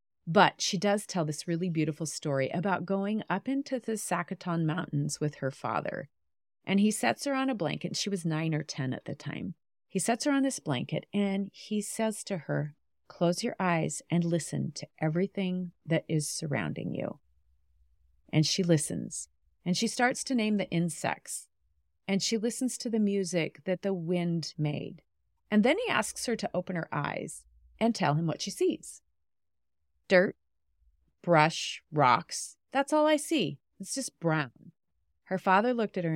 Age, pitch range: 40-59, 145-200 Hz